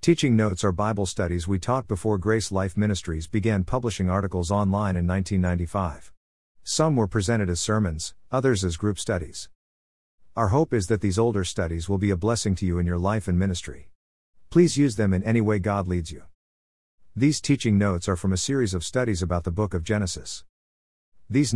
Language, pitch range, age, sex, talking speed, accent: English, 90-115 Hz, 50-69, male, 190 wpm, American